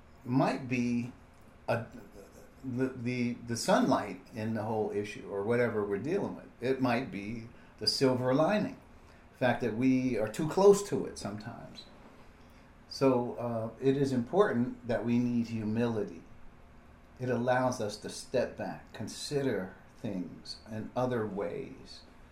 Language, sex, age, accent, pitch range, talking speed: English, male, 50-69, American, 100-130 Hz, 140 wpm